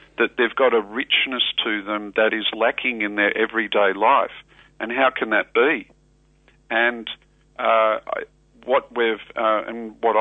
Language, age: English, 50-69